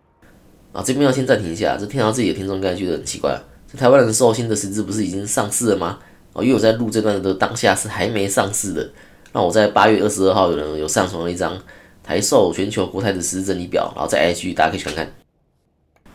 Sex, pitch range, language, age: male, 95-115 Hz, Chinese, 20-39